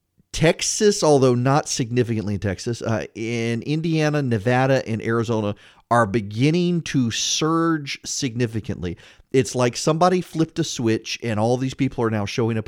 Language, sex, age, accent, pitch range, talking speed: English, male, 30-49, American, 110-145 Hz, 145 wpm